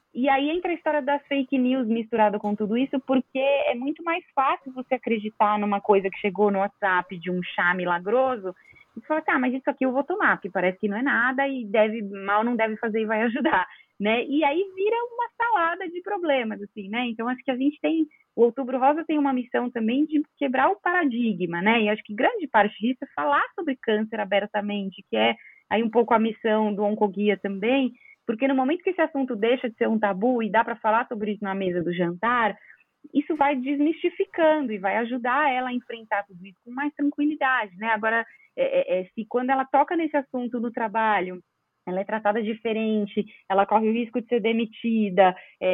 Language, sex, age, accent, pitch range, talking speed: Portuguese, female, 20-39, Brazilian, 210-285 Hz, 210 wpm